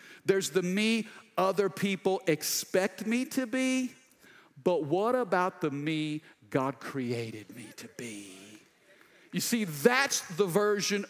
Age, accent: 50-69, American